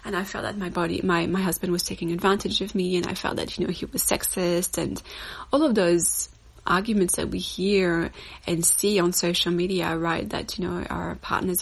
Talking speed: 215 wpm